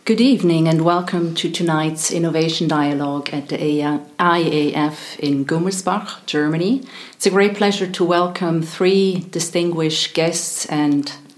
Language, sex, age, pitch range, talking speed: English, female, 40-59, 145-175 Hz, 125 wpm